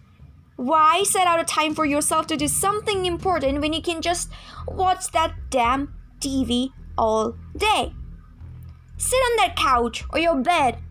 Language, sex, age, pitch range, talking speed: English, female, 20-39, 265-365 Hz, 155 wpm